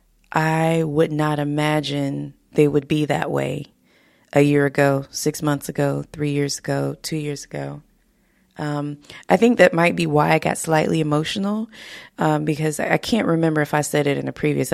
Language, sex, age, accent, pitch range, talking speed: English, female, 20-39, American, 145-165 Hz, 180 wpm